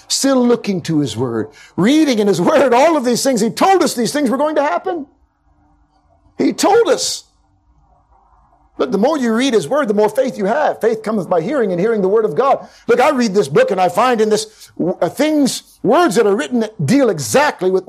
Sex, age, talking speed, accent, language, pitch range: male, 50-69, 220 wpm, American, English, 140-230 Hz